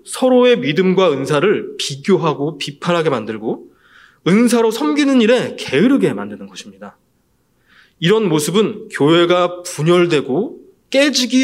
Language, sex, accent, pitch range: Korean, male, native, 160-240 Hz